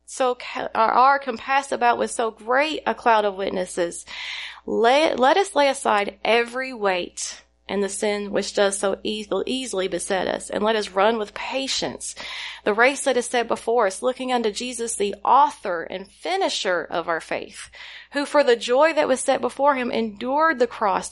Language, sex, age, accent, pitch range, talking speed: English, female, 30-49, American, 195-260 Hz, 185 wpm